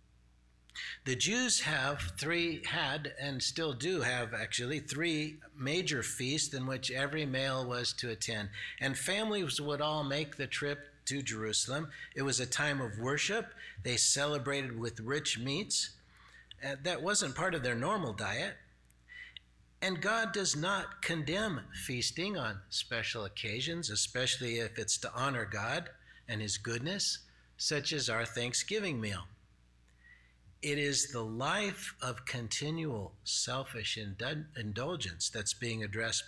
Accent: American